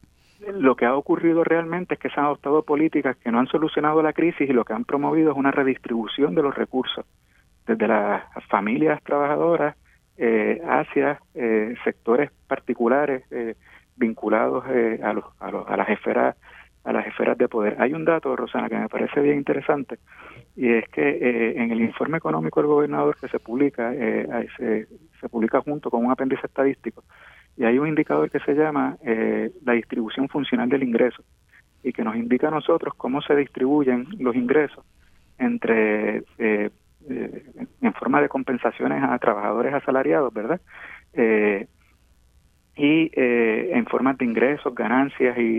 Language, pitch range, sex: Spanish, 115-145 Hz, male